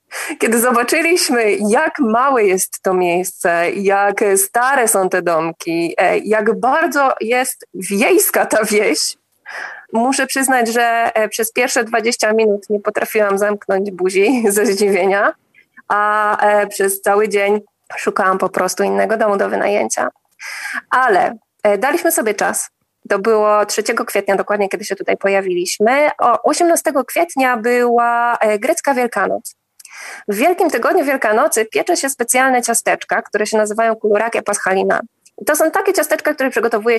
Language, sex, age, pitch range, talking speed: Polish, female, 20-39, 200-250 Hz, 130 wpm